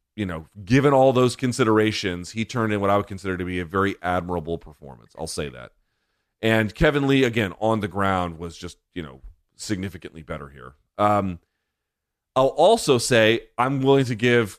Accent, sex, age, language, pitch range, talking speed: American, male, 30-49, English, 95-120 Hz, 180 wpm